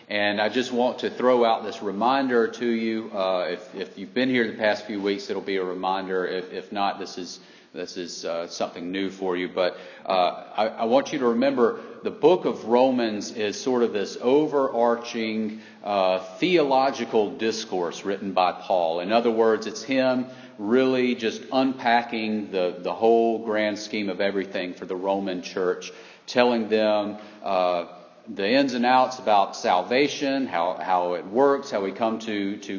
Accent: American